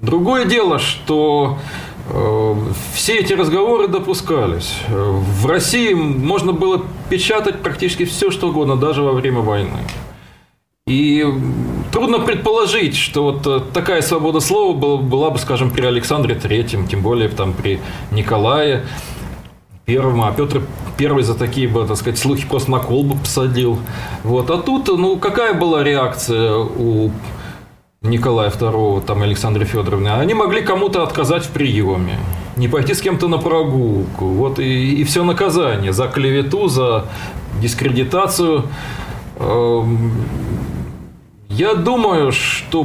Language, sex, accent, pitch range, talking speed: Russian, male, native, 110-160 Hz, 125 wpm